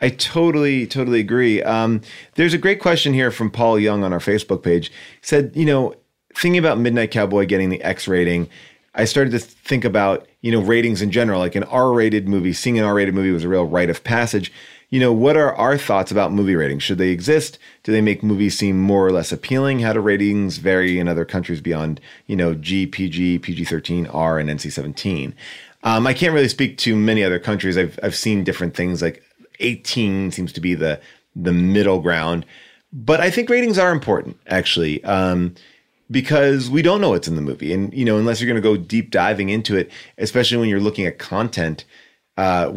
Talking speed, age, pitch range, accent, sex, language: 210 wpm, 30-49, 95-125 Hz, American, male, English